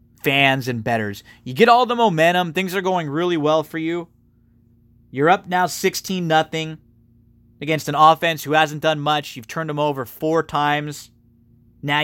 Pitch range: 115-155 Hz